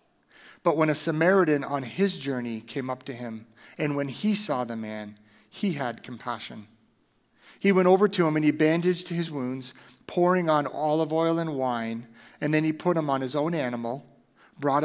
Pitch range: 125-155 Hz